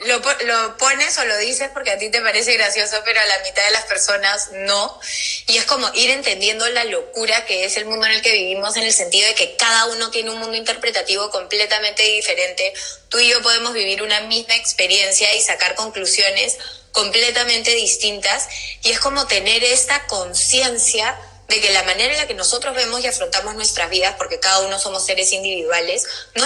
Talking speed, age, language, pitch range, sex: 195 wpm, 20-39, Spanish, 205-255 Hz, female